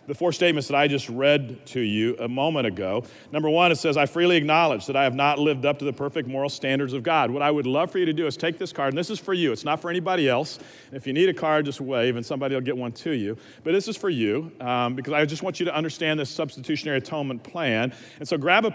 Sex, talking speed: male, 285 wpm